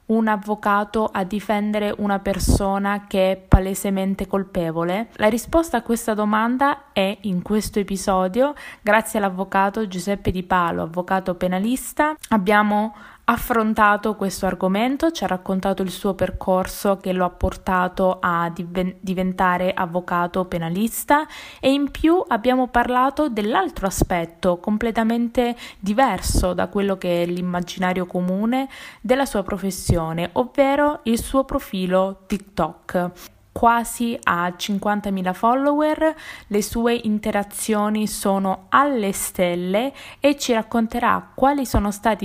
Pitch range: 190-235 Hz